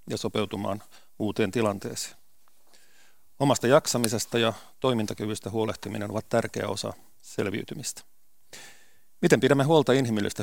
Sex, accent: male, native